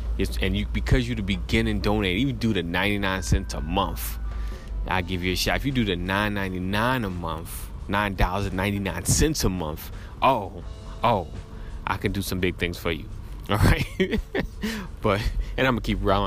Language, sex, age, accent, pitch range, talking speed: English, male, 30-49, American, 85-100 Hz, 175 wpm